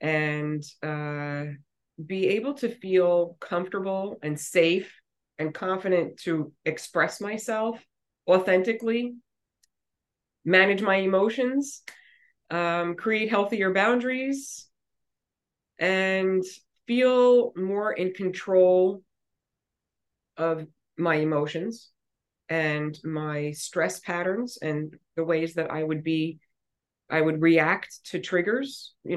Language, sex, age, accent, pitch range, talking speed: English, female, 30-49, American, 155-190 Hz, 95 wpm